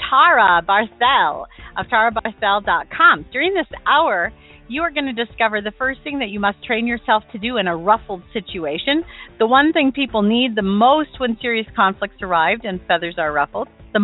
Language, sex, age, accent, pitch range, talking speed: English, female, 40-59, American, 195-250 Hz, 180 wpm